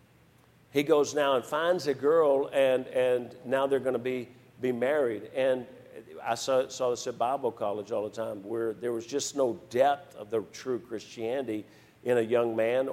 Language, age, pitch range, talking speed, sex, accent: English, 50-69, 125-140 Hz, 190 wpm, male, American